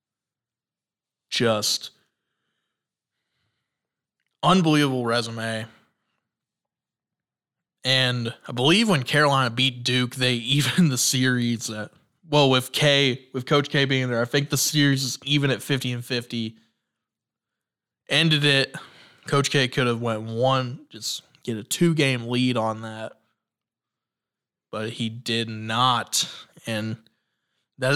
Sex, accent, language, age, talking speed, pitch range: male, American, English, 20-39, 115 wpm, 120-150 Hz